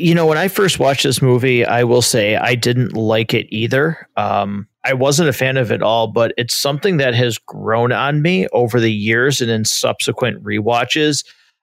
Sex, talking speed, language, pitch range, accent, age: male, 200 wpm, English, 120-145 Hz, American, 40-59